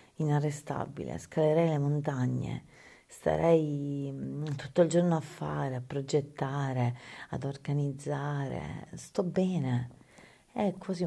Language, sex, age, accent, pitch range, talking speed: Italian, female, 40-59, native, 130-155 Hz, 100 wpm